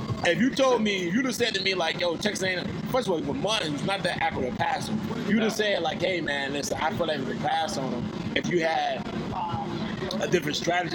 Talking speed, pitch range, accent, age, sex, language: 250 wpm, 155-200 Hz, American, 20-39, male, English